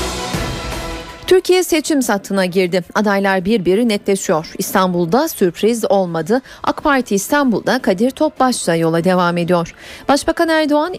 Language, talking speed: Turkish, 110 wpm